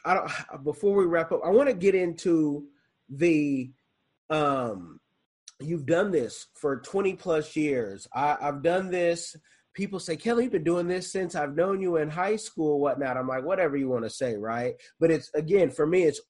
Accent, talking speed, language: American, 185 wpm, English